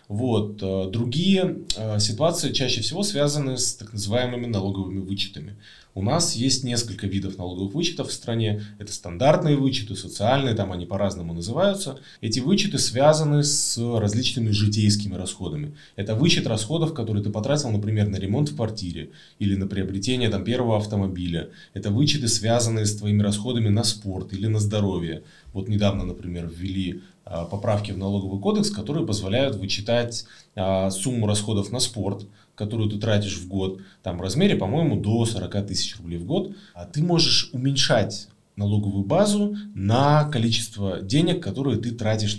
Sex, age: male, 20-39